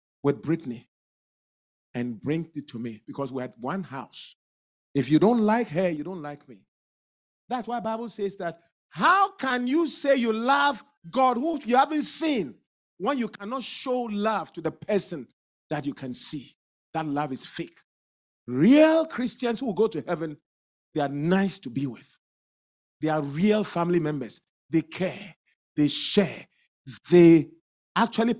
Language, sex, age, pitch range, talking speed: English, male, 40-59, 165-275 Hz, 160 wpm